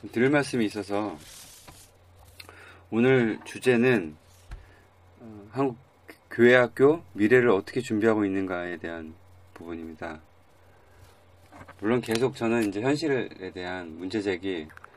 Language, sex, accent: Korean, male, native